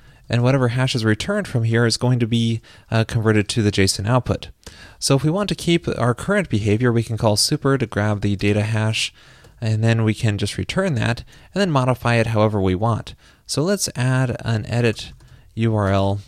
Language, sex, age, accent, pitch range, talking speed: English, male, 20-39, American, 105-140 Hz, 205 wpm